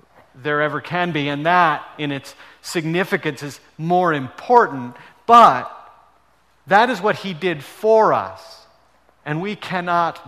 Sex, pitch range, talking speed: male, 130-180 Hz, 135 wpm